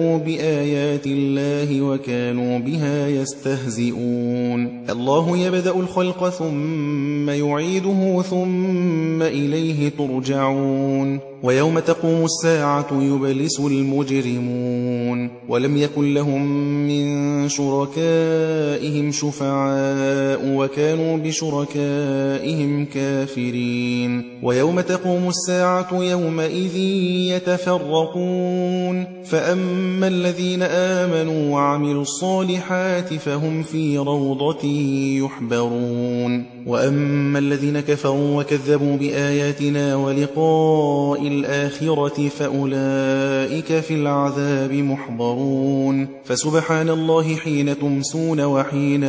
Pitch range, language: 135-160 Hz, Arabic